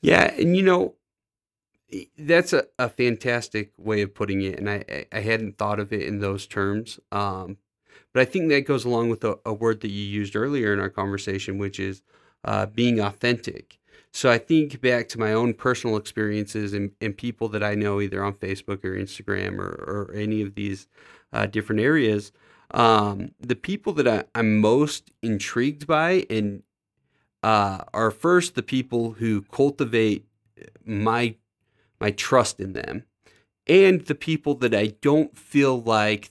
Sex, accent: male, American